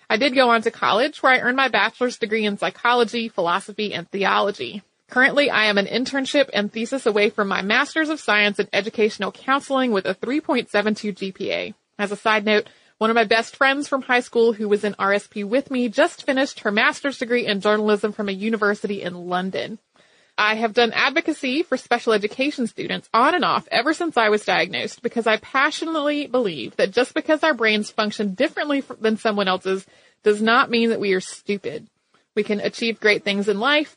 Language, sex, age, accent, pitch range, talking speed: English, female, 30-49, American, 210-265 Hz, 195 wpm